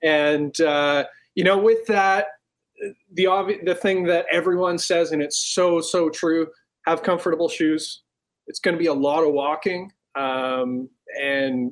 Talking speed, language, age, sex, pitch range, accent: 160 wpm, English, 20-39, male, 150-190 Hz, American